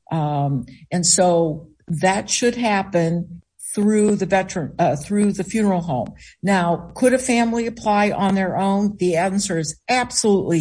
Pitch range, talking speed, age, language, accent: 160-200 Hz, 145 wpm, 60-79, English, American